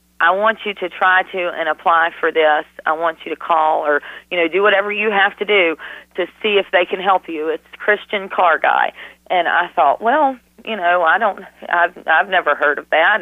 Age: 40-59